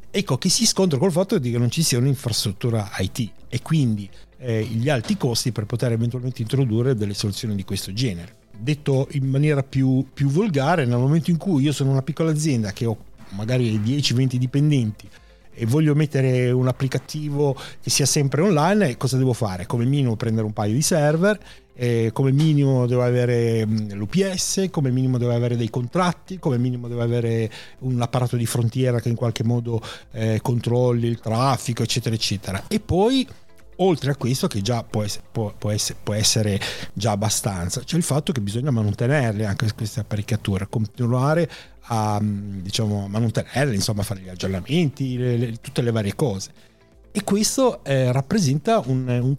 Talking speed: 170 wpm